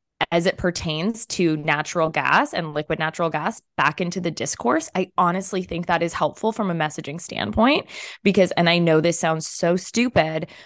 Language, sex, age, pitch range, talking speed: English, female, 20-39, 155-195 Hz, 180 wpm